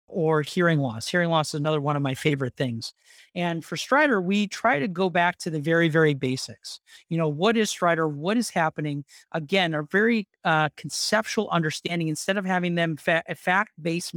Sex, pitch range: male, 150-190 Hz